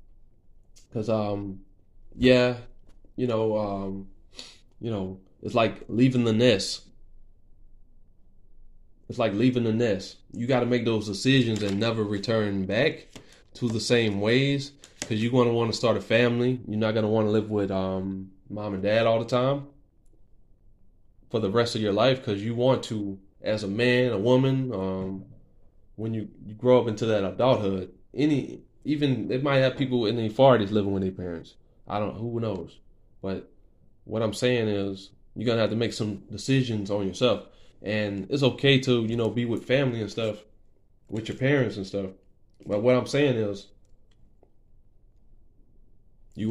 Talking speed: 175 wpm